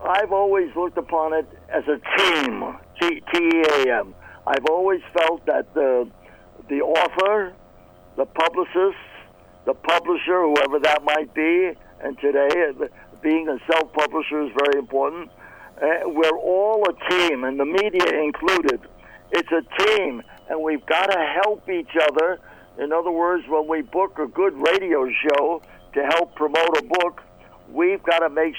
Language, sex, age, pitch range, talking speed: English, male, 60-79, 155-190 Hz, 145 wpm